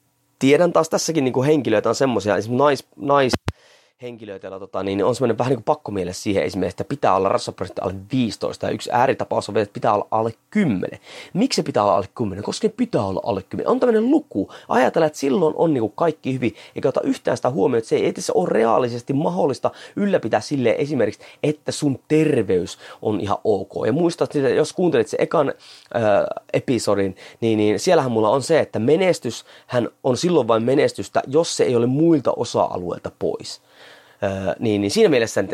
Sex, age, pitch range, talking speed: male, 30-49, 115-180 Hz, 185 wpm